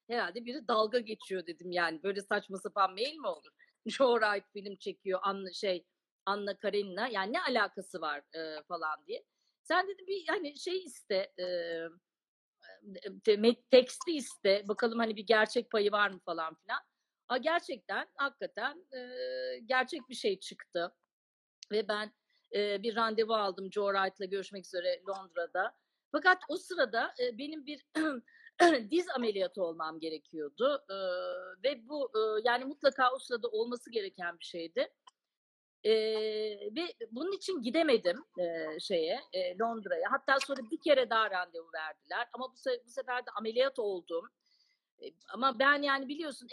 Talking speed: 140 wpm